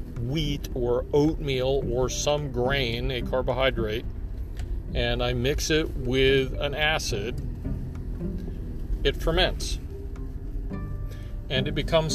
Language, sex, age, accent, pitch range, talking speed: English, male, 40-59, American, 90-140 Hz, 100 wpm